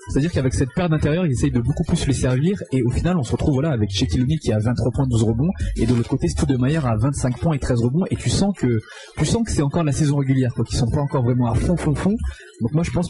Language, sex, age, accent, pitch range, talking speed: French, male, 20-39, French, 115-145 Hz, 310 wpm